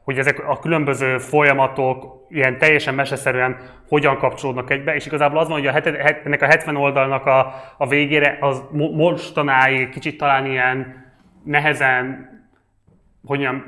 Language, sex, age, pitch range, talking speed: Hungarian, male, 20-39, 120-140 Hz, 150 wpm